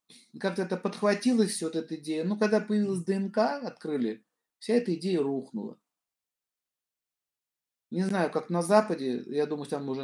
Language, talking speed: Russian, 150 wpm